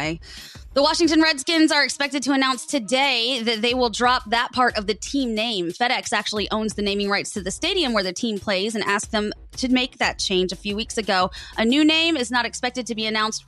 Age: 20-39